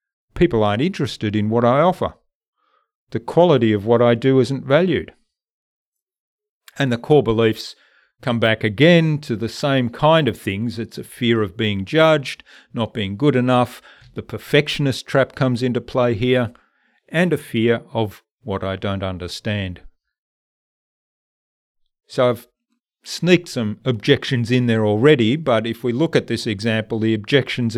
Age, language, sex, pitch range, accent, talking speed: 40-59, English, male, 110-140 Hz, Australian, 150 wpm